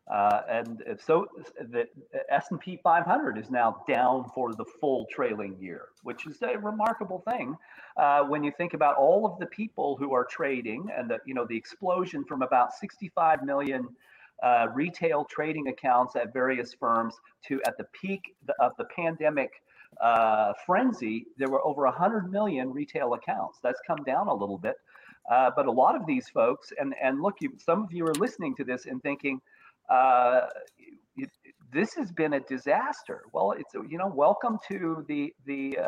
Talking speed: 175 wpm